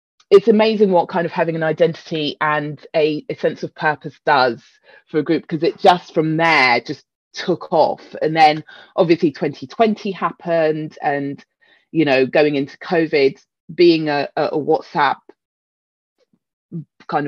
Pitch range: 135-170 Hz